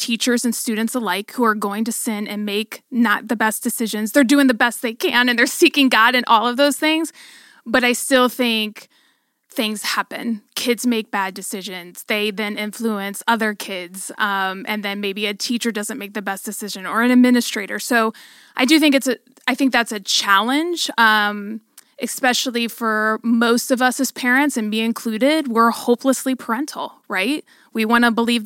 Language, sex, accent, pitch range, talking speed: English, female, American, 215-250 Hz, 190 wpm